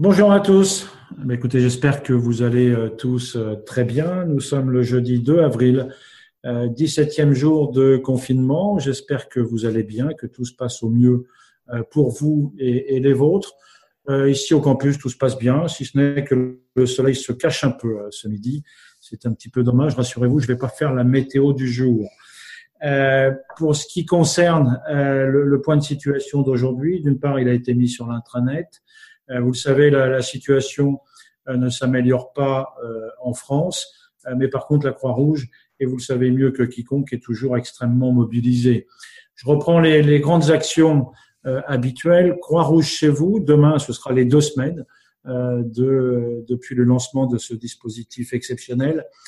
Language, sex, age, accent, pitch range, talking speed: French, male, 40-59, French, 125-150 Hz, 170 wpm